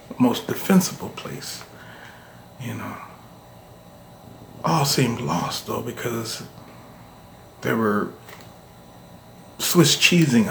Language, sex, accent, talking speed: English, male, American, 80 wpm